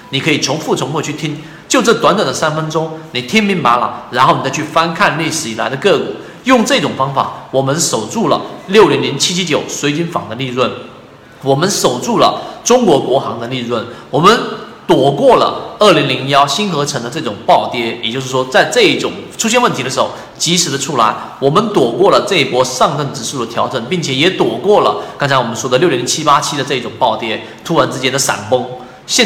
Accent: native